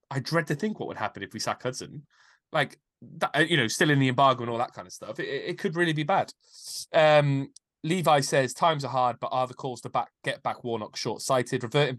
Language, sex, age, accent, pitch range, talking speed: English, male, 20-39, British, 105-135 Hz, 235 wpm